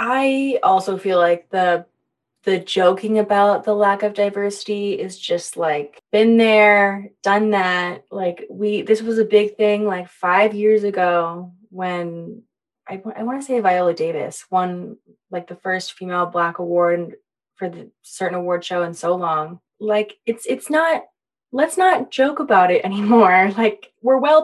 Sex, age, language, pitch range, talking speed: female, 20-39, English, 180-220 Hz, 160 wpm